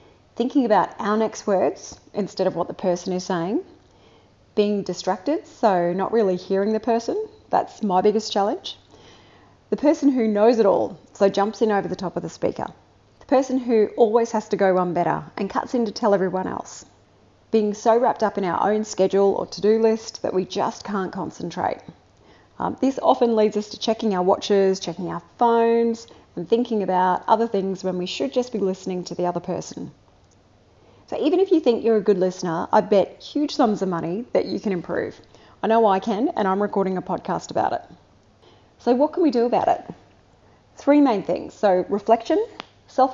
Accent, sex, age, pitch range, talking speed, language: Australian, female, 30-49, 185-240 Hz, 195 wpm, English